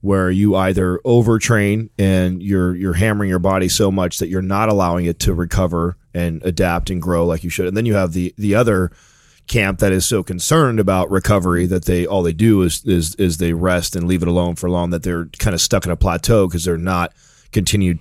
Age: 30-49